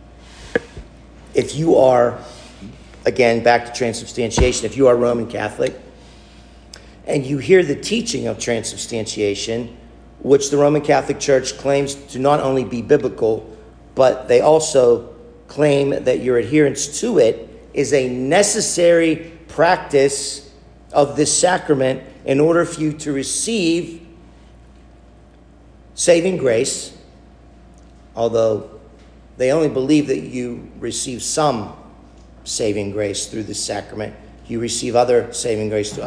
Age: 50-69